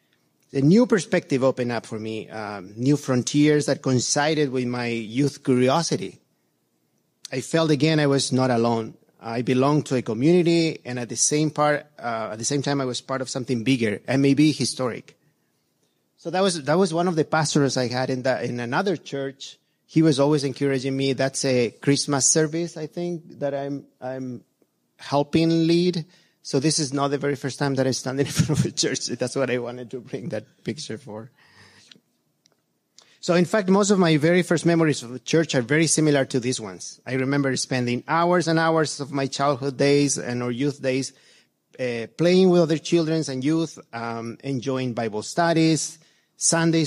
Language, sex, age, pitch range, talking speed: English, male, 30-49, 125-155 Hz, 190 wpm